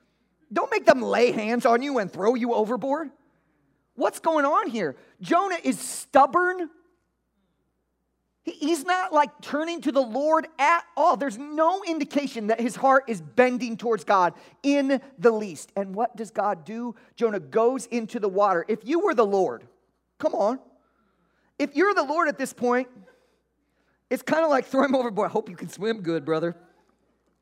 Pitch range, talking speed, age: 190-275 Hz, 170 wpm, 40-59